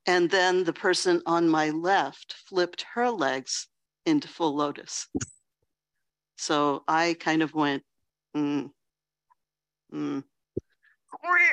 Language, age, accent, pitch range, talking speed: English, 60-79, American, 155-235 Hz, 100 wpm